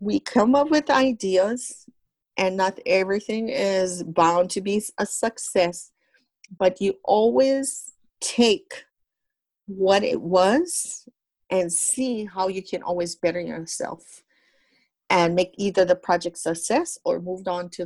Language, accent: English, American